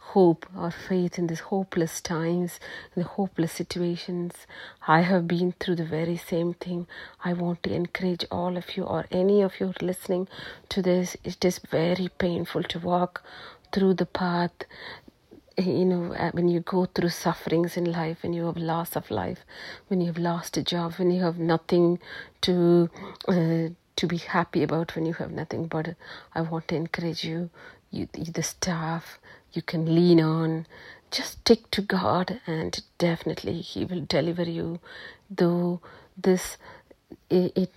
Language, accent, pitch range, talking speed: English, Indian, 165-180 Hz, 165 wpm